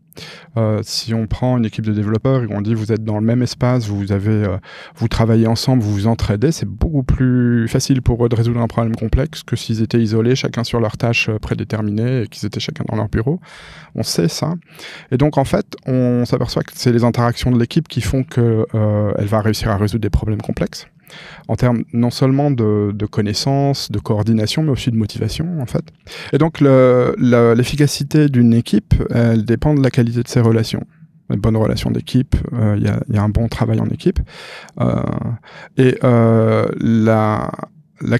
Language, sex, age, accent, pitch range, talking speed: French, male, 20-39, French, 110-135 Hz, 200 wpm